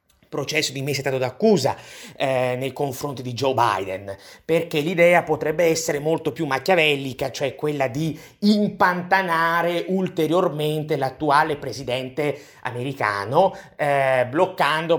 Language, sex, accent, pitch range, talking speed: Italian, male, native, 135-165 Hz, 110 wpm